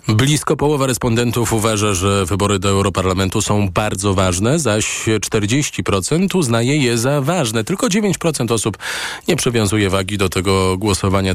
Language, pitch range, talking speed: Polish, 100-125 Hz, 135 wpm